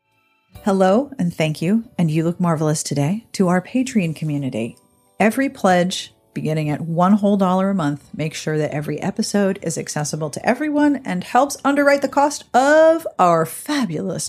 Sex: female